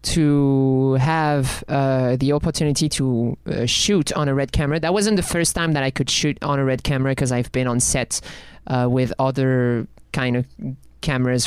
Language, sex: English, male